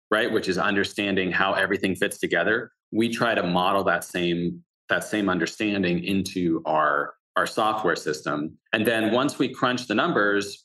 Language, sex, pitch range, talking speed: English, male, 95-115 Hz, 165 wpm